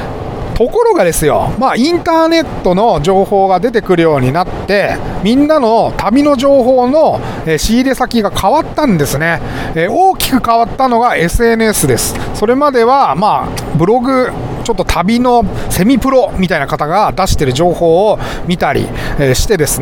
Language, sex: Japanese, male